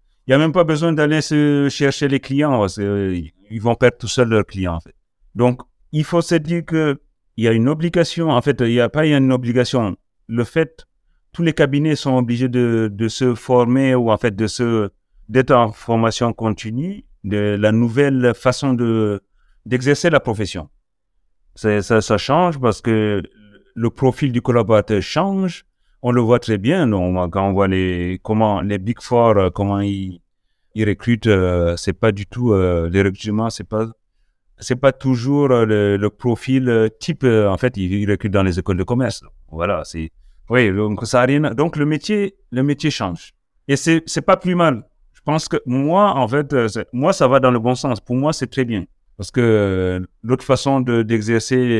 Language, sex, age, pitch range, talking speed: French, male, 40-59, 105-135 Hz, 195 wpm